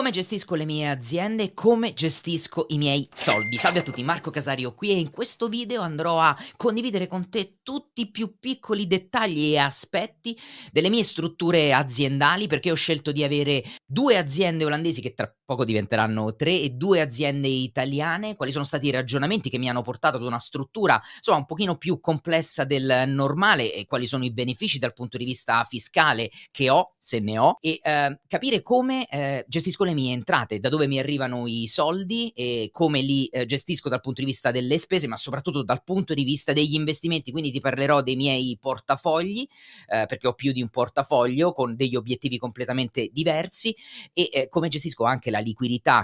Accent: native